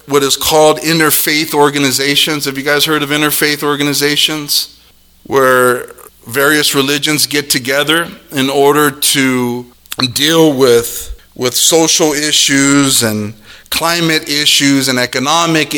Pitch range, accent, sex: 140-180 Hz, American, male